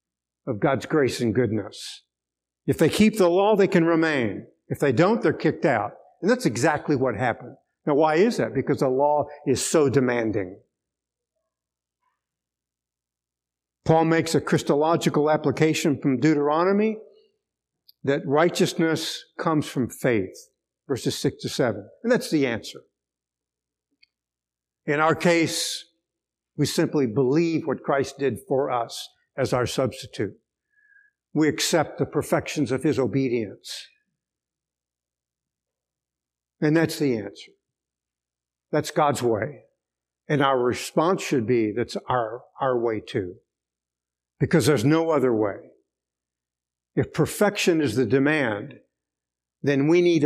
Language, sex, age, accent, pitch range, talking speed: English, male, 60-79, American, 100-165 Hz, 125 wpm